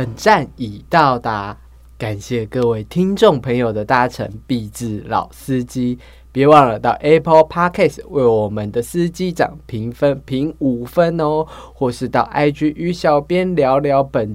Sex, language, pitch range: male, Chinese, 110-150 Hz